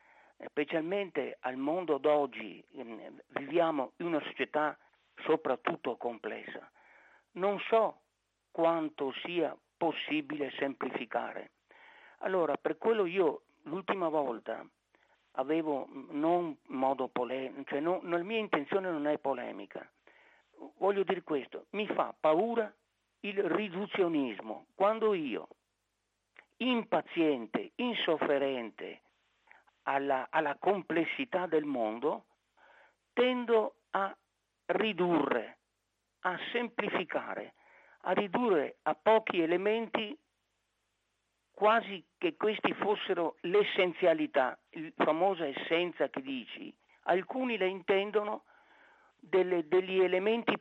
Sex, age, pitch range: male, 60-79, 150-220 Hz